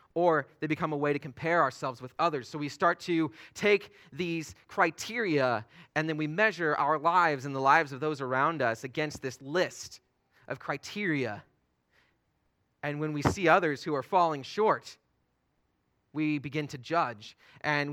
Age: 30-49